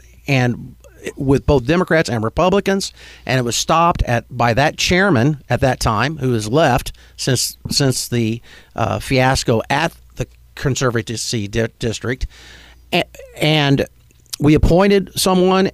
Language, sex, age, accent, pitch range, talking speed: English, male, 50-69, American, 120-160 Hz, 130 wpm